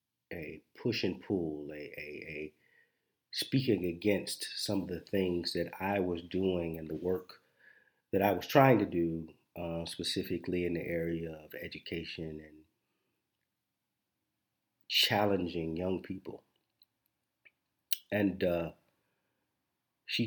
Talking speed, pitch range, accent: 120 wpm, 80-95 Hz, American